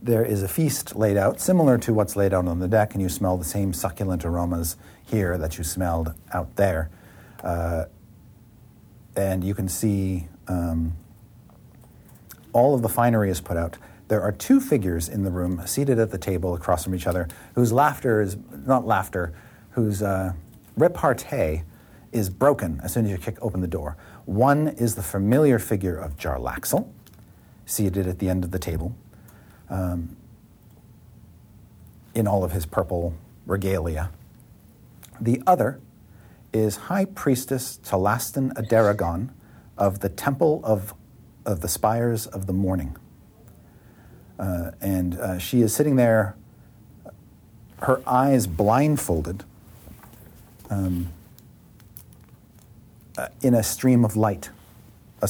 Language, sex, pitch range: English, male, 90-115 Hz